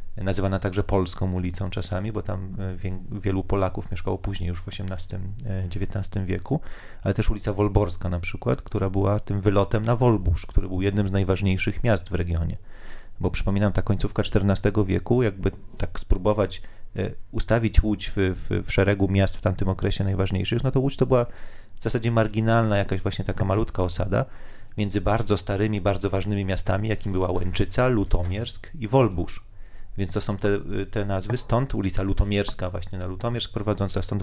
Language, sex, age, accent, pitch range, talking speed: Polish, male, 30-49, native, 95-105 Hz, 165 wpm